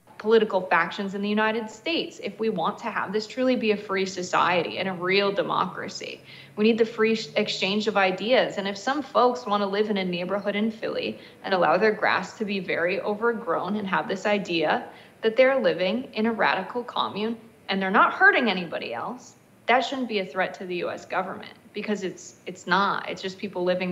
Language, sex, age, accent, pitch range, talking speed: English, female, 20-39, American, 185-220 Hz, 205 wpm